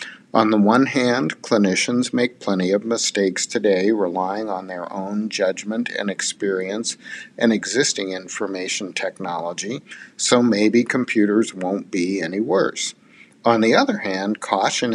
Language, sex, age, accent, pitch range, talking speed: English, male, 50-69, American, 95-115 Hz, 130 wpm